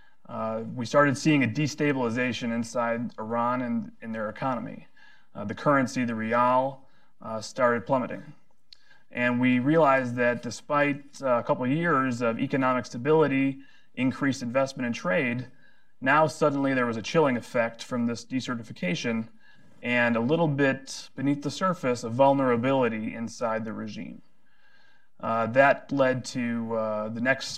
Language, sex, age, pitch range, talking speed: English, male, 30-49, 115-140 Hz, 140 wpm